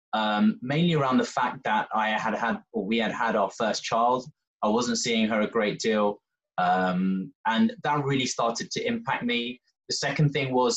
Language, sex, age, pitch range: English, male, 20-39, 110-155 Hz